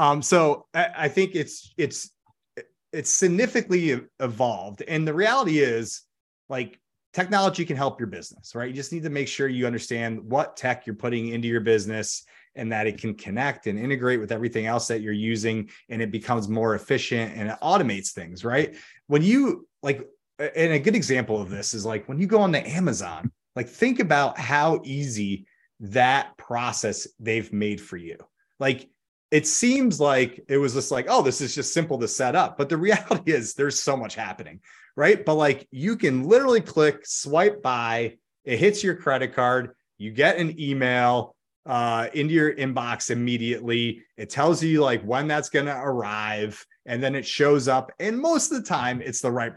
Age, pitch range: 30-49, 115-160 Hz